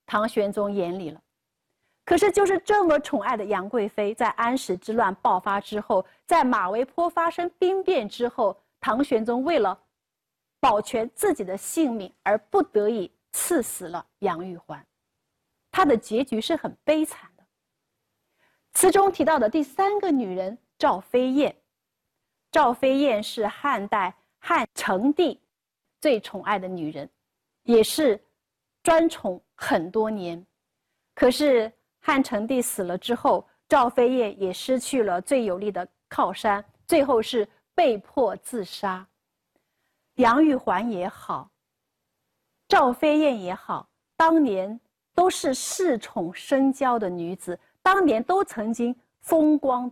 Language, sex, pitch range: Chinese, female, 205-300 Hz